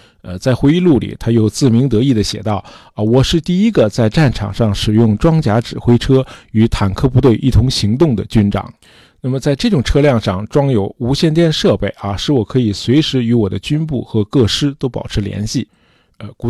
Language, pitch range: Chinese, 105-150 Hz